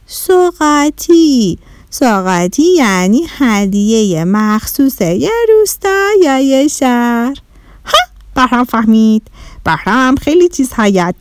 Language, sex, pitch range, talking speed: Persian, female, 190-300 Hz, 90 wpm